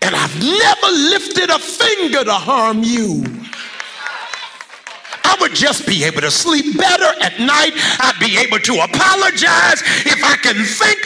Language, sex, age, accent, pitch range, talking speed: English, male, 50-69, American, 295-375 Hz, 145 wpm